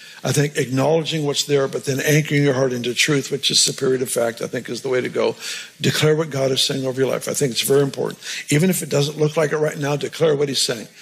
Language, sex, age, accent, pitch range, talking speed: English, male, 60-79, American, 145-180 Hz, 270 wpm